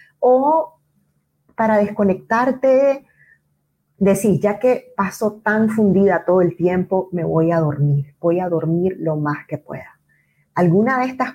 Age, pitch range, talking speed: 30-49, 155-220 Hz, 135 wpm